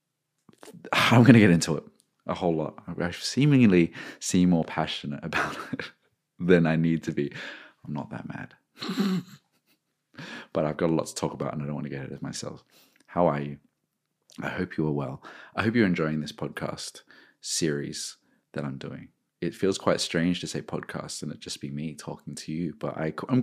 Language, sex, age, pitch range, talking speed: English, male, 30-49, 80-110 Hz, 195 wpm